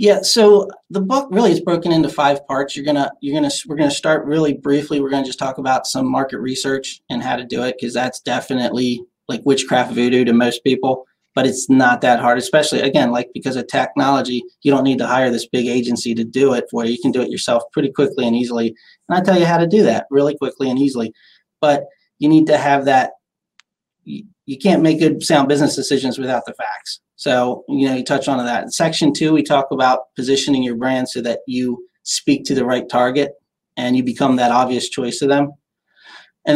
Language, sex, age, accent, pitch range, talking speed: English, male, 30-49, American, 125-145 Hz, 230 wpm